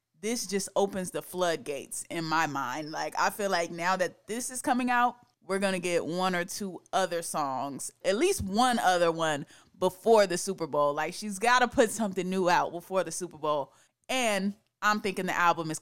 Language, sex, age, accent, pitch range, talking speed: English, female, 20-39, American, 170-215 Hz, 195 wpm